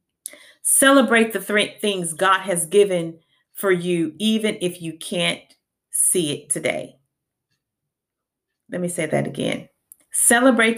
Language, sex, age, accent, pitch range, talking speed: English, female, 40-59, American, 155-215 Hz, 115 wpm